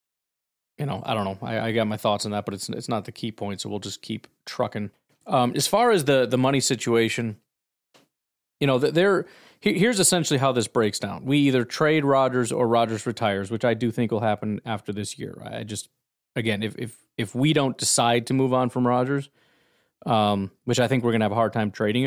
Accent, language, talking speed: American, English, 225 wpm